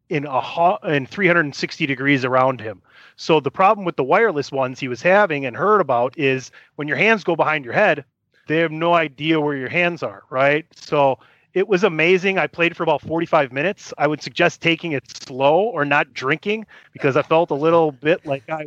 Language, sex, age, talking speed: English, male, 30-49, 210 wpm